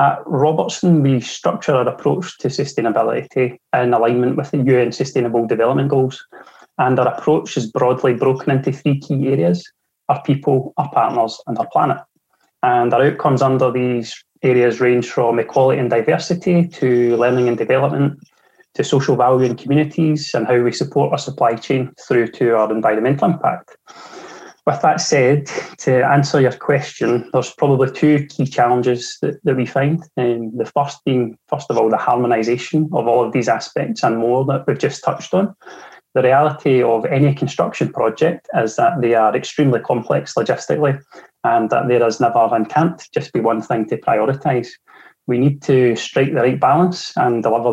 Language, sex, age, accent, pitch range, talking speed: English, male, 20-39, British, 120-150 Hz, 170 wpm